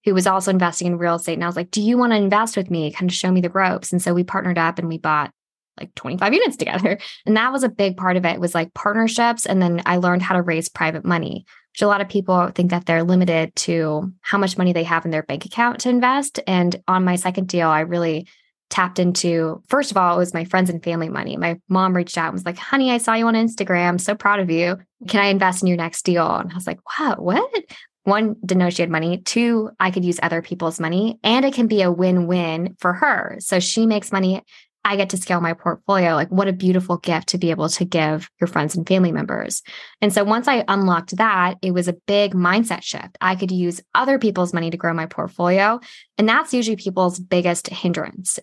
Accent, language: American, English